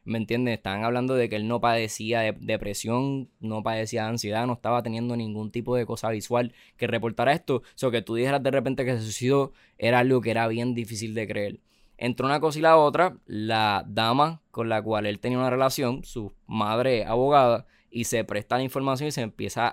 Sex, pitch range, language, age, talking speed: male, 115-135 Hz, Spanish, 10-29, 215 wpm